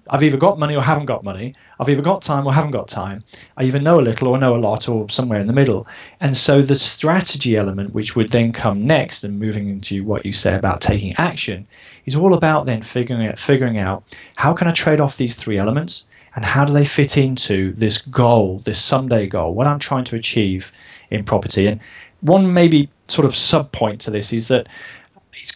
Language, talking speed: English, 220 wpm